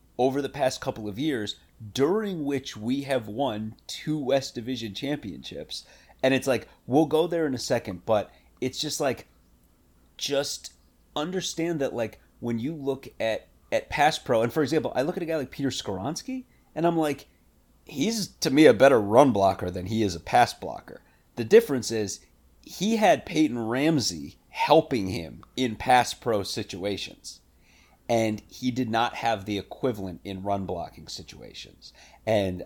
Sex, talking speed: male, 165 wpm